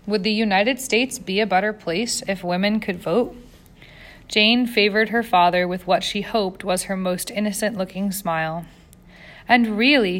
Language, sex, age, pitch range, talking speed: English, female, 20-39, 175-220 Hz, 160 wpm